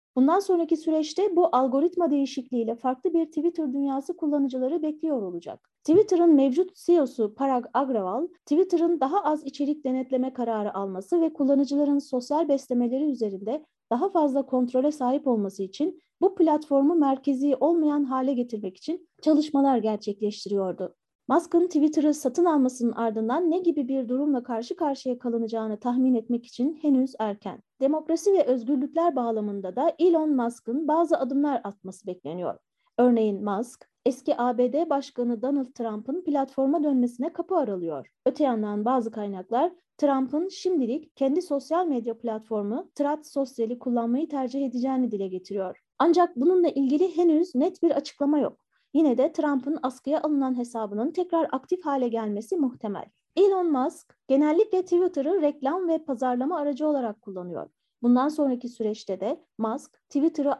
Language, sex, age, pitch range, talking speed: Turkish, female, 30-49, 245-320 Hz, 135 wpm